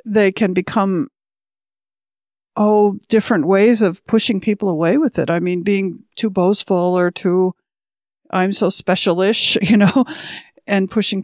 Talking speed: 145 wpm